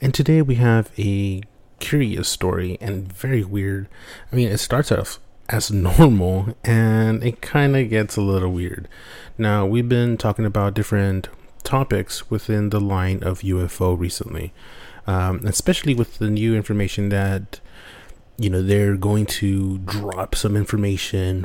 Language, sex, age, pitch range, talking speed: English, male, 30-49, 95-115 Hz, 150 wpm